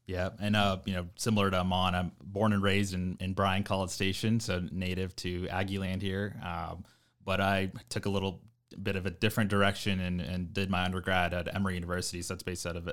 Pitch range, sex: 85-95 Hz, male